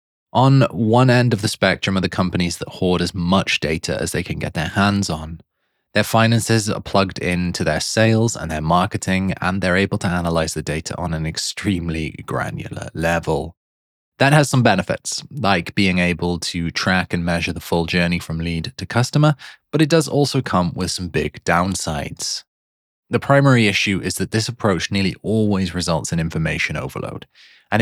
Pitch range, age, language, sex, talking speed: 85-115 Hz, 20-39, English, male, 180 wpm